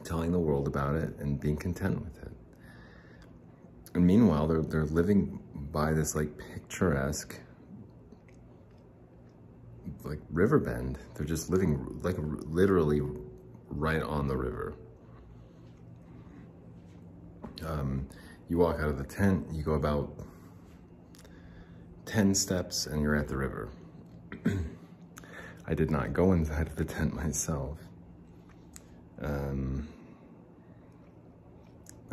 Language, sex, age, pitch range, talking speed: English, male, 30-49, 70-90 Hz, 110 wpm